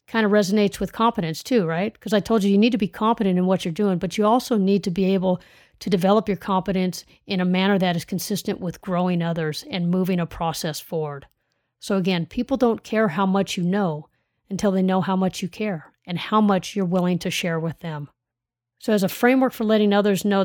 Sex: female